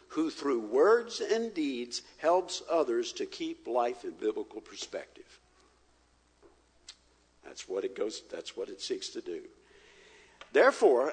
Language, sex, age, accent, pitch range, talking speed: English, male, 60-79, American, 300-415 Hz, 130 wpm